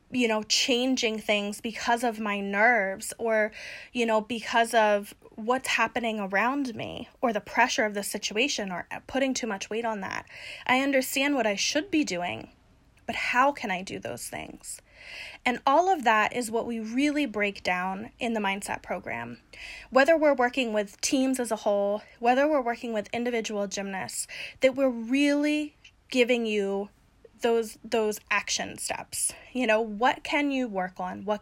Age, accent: 20-39, American